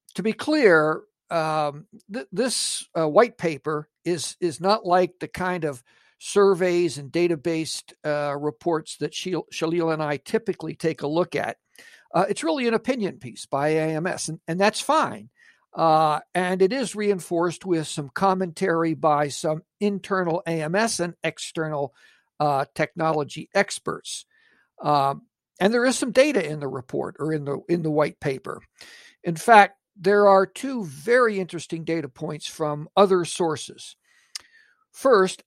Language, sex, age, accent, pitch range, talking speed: English, male, 60-79, American, 155-200 Hz, 150 wpm